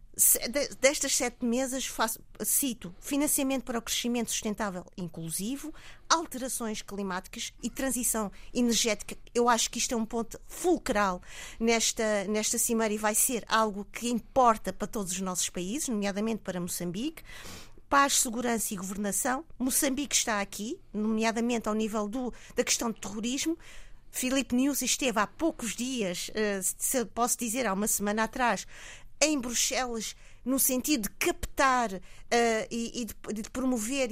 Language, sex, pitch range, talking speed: Portuguese, female, 210-260 Hz, 135 wpm